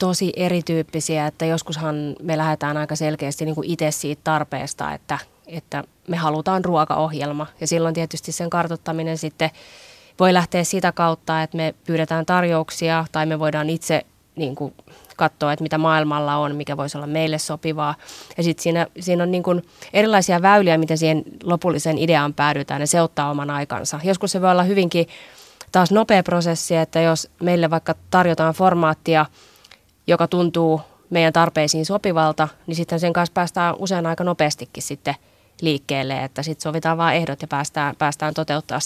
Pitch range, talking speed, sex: 155-175 Hz, 160 wpm, female